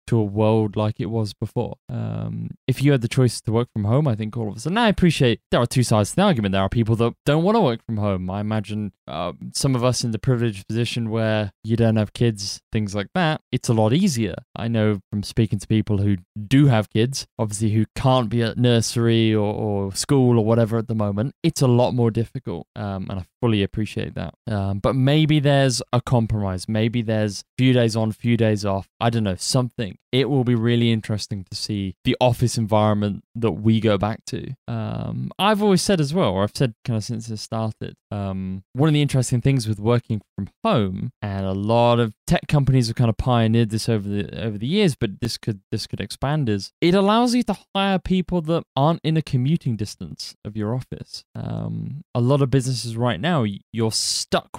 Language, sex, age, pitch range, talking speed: English, male, 20-39, 105-130 Hz, 225 wpm